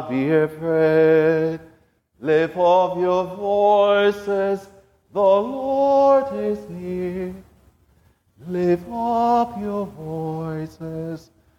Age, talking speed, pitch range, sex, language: 40-59, 70 wpm, 140-195 Hz, male, English